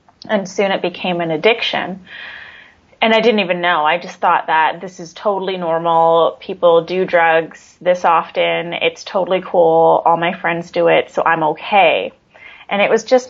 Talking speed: 175 wpm